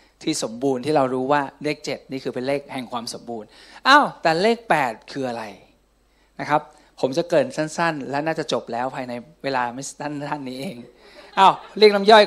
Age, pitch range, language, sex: 20-39, 140-200 Hz, Thai, male